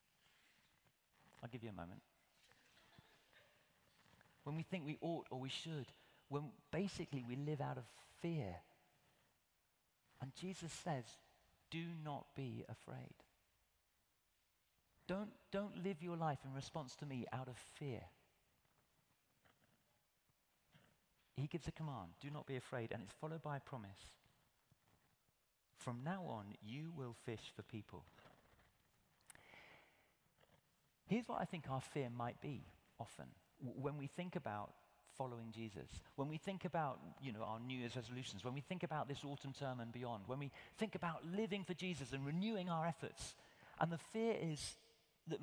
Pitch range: 120-165 Hz